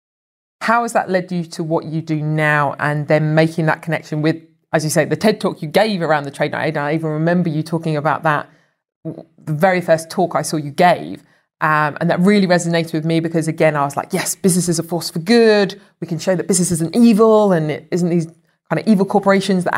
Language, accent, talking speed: English, British, 235 wpm